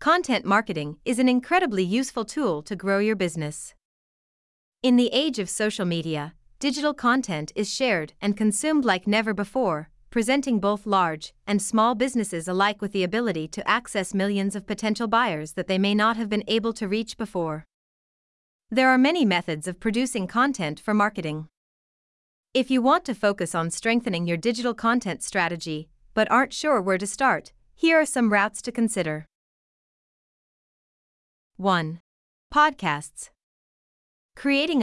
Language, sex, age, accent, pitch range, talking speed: English, female, 30-49, American, 180-245 Hz, 150 wpm